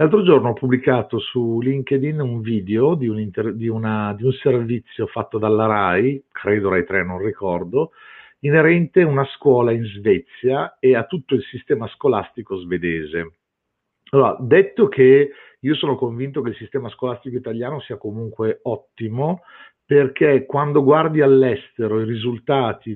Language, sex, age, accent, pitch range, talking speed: Italian, male, 50-69, native, 115-145 Hz, 135 wpm